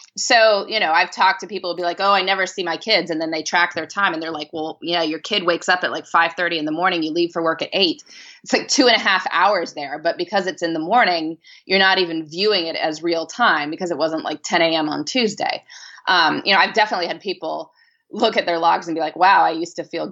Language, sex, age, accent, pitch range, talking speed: English, female, 20-39, American, 160-230 Hz, 275 wpm